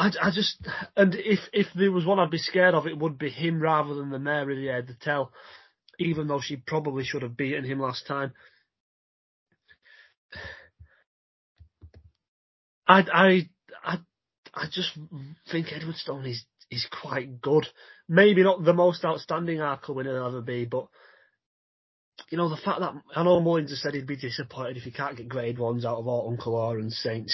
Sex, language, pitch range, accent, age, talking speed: male, English, 130-170 Hz, British, 30-49, 185 wpm